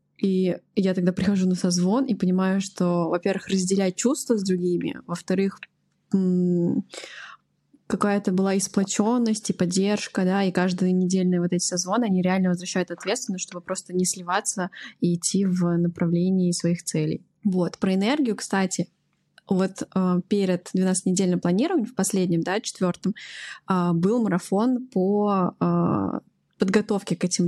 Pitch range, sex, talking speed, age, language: 180-205 Hz, female, 130 wpm, 20-39, Russian